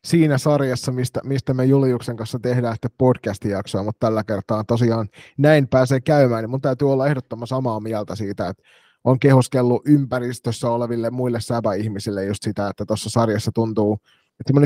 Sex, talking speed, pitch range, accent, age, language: male, 160 wpm, 115-135 Hz, native, 30-49, Finnish